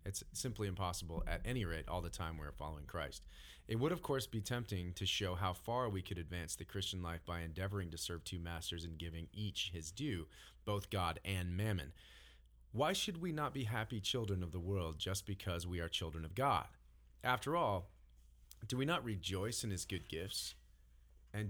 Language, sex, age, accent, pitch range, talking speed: English, male, 30-49, American, 80-105 Hz, 200 wpm